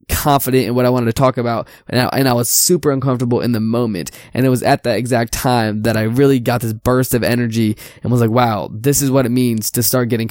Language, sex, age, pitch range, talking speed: English, male, 20-39, 115-130 Hz, 255 wpm